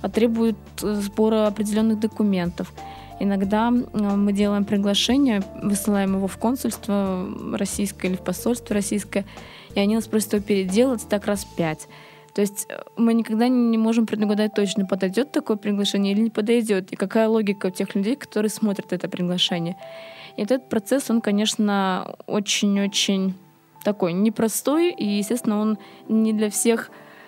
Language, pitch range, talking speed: Russian, 190-220 Hz, 145 wpm